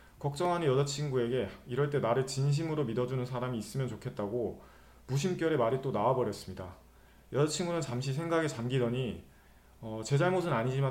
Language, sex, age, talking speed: English, male, 30-49, 120 wpm